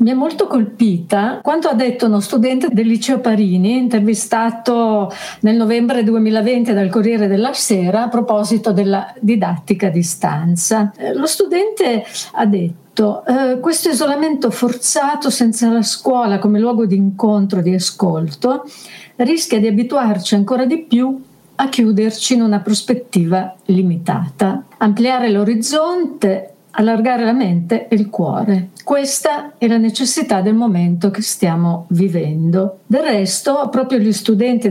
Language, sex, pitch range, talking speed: Italian, female, 190-245 Hz, 135 wpm